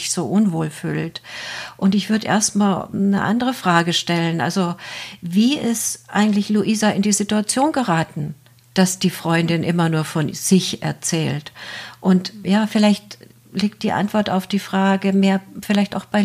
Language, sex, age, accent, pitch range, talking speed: German, female, 50-69, German, 175-210 Hz, 150 wpm